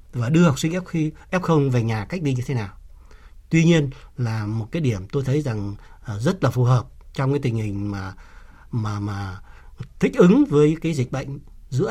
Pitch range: 110-150 Hz